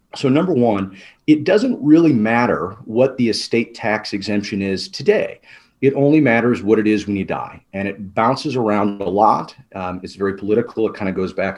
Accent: American